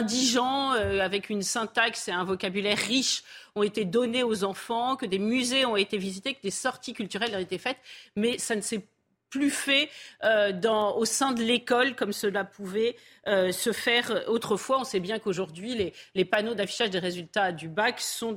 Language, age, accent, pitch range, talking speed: French, 40-59, French, 195-250 Hz, 195 wpm